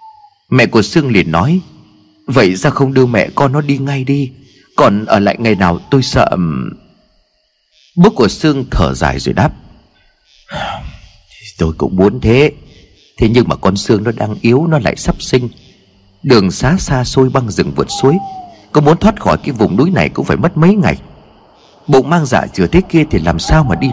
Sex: male